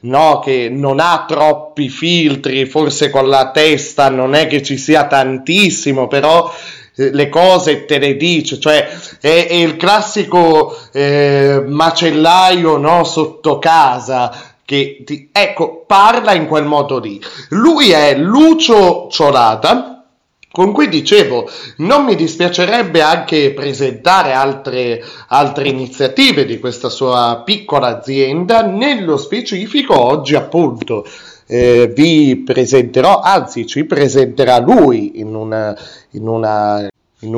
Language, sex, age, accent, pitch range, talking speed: Italian, male, 30-49, native, 135-180 Hz, 125 wpm